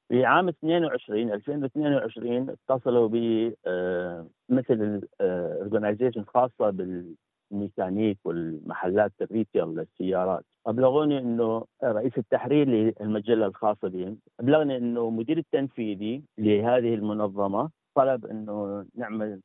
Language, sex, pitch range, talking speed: Arabic, male, 100-125 Hz, 95 wpm